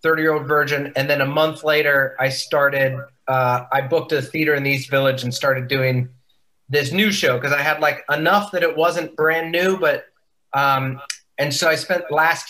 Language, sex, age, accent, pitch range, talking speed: English, male, 30-49, American, 135-165 Hz, 200 wpm